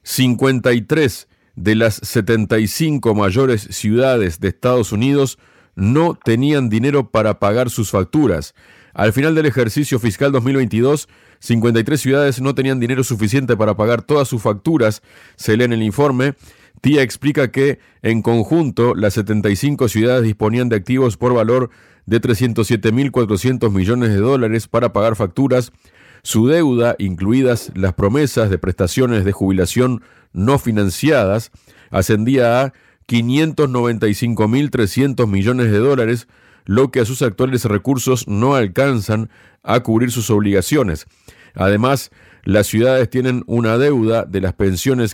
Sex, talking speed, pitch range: male, 130 wpm, 105-130 Hz